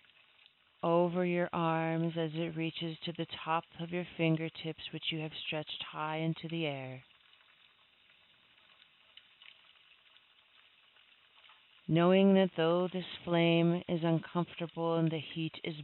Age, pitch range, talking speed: 40-59, 150-170 Hz, 115 wpm